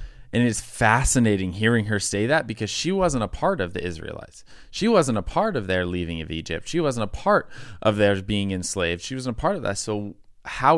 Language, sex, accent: English, male, American